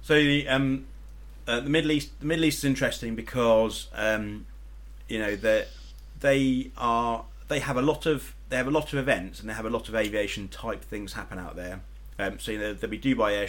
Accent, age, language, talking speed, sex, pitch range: British, 30-49, English, 220 wpm, male, 85-110 Hz